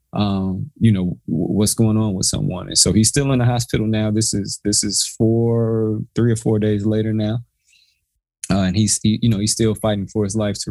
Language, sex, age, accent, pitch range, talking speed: English, male, 20-39, American, 100-115 Hz, 230 wpm